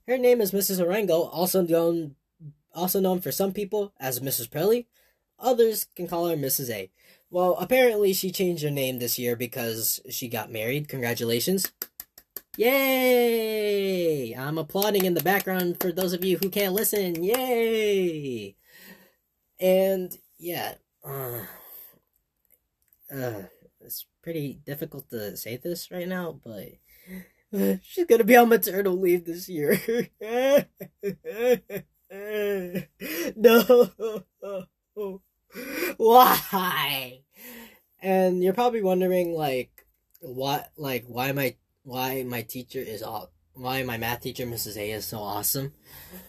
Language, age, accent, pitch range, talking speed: English, 10-29, American, 125-195 Hz, 120 wpm